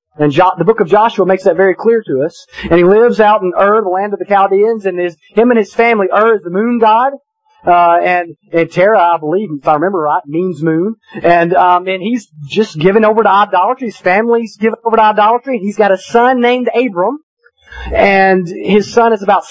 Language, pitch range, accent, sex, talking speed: English, 160-215 Hz, American, male, 220 wpm